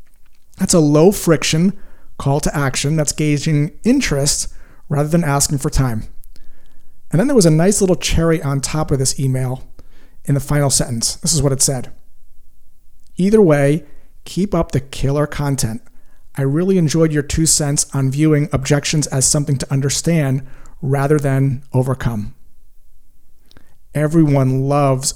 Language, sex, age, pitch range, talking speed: English, male, 40-59, 135-160 Hz, 150 wpm